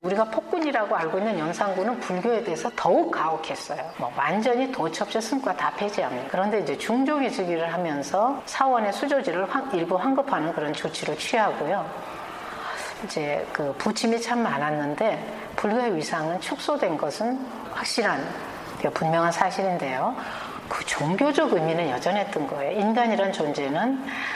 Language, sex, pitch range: Korean, female, 180-250 Hz